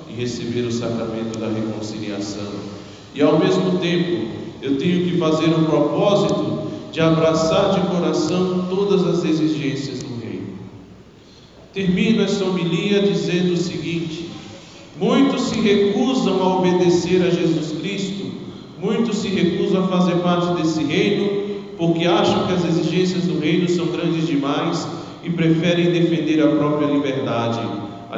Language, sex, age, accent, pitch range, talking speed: Portuguese, male, 40-59, Brazilian, 135-175 Hz, 135 wpm